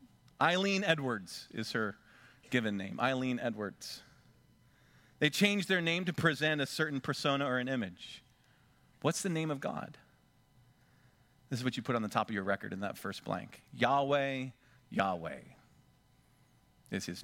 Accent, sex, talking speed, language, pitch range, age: American, male, 155 wpm, English, 125-165 Hz, 40-59